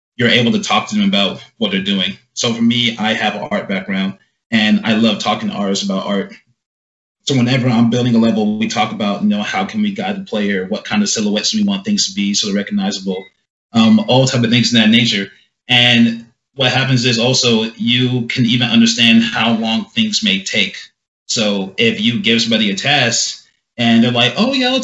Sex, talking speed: male, 215 wpm